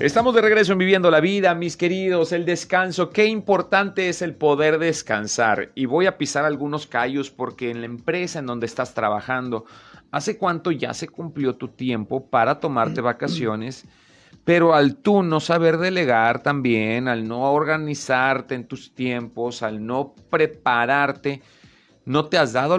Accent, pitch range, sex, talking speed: Mexican, 125-165 Hz, male, 160 wpm